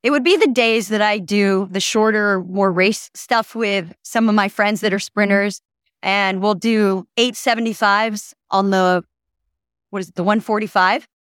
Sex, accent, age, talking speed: female, American, 30-49, 170 wpm